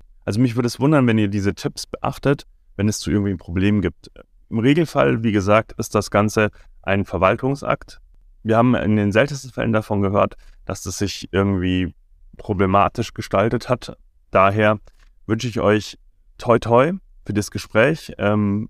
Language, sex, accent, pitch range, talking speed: German, male, German, 85-105 Hz, 165 wpm